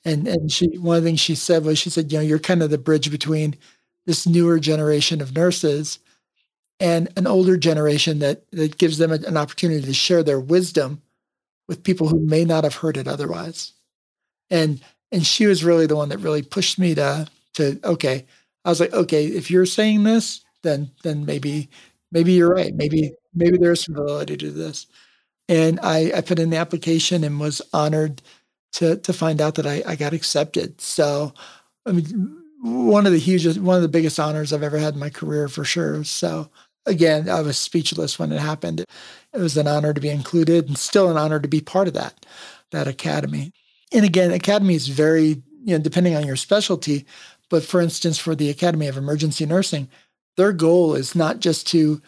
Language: English